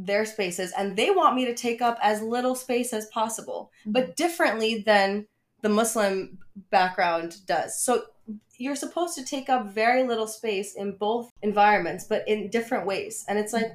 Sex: female